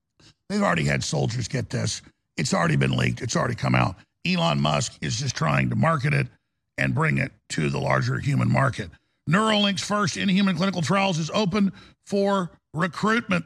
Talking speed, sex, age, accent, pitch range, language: 175 wpm, male, 50-69, American, 145-195 Hz, English